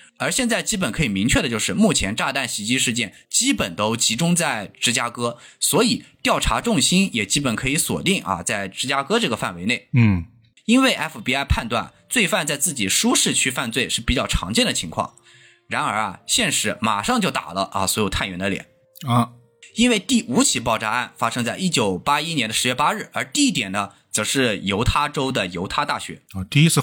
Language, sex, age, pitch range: Chinese, male, 20-39, 115-185 Hz